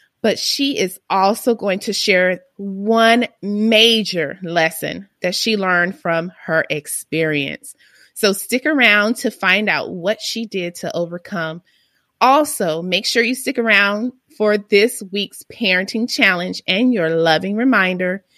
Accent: American